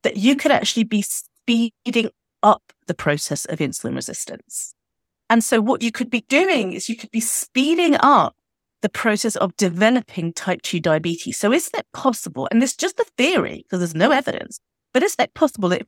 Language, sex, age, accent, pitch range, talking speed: English, female, 30-49, British, 180-260 Hz, 195 wpm